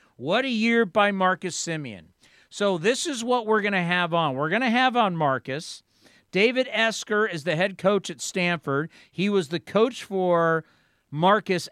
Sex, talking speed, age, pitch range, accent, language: male, 180 wpm, 50-69, 150-200 Hz, American, English